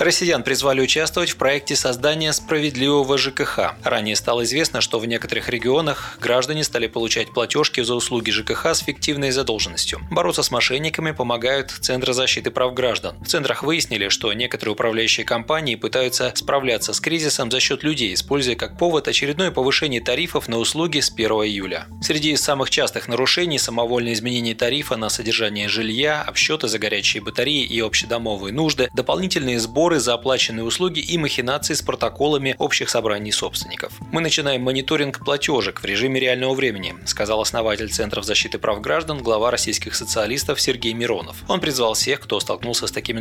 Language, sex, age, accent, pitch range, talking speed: Russian, male, 20-39, native, 115-150 Hz, 160 wpm